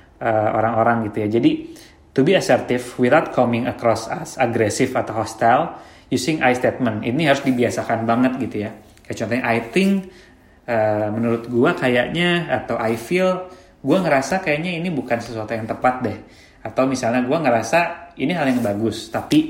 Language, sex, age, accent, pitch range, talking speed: Indonesian, male, 20-39, native, 110-135 Hz, 155 wpm